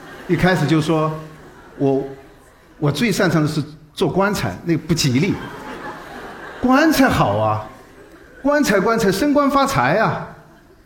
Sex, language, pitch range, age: male, Chinese, 135-170 Hz, 50-69